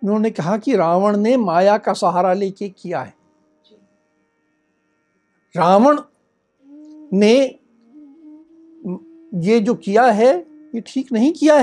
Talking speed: 110 wpm